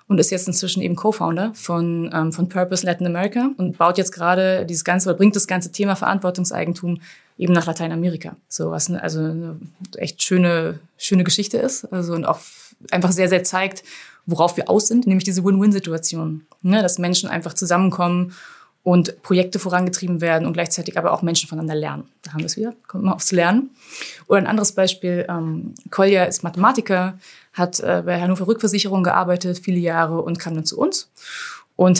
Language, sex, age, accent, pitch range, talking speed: German, female, 20-39, German, 165-190 Hz, 180 wpm